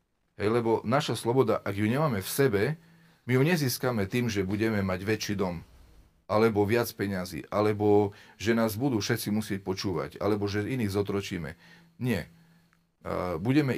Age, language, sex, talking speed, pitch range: 40-59, Slovak, male, 150 wpm, 90-115 Hz